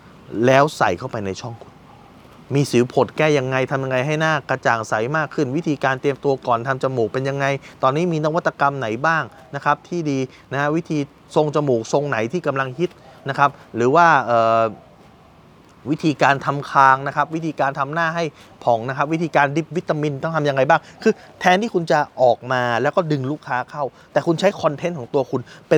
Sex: male